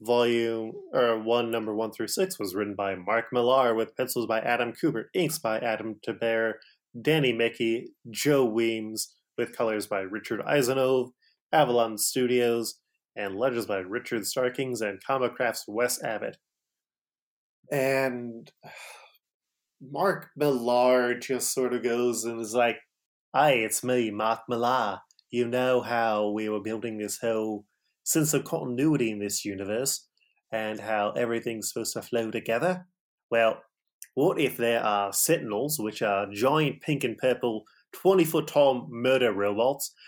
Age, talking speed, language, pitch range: 20-39, 135 wpm, English, 110-130 Hz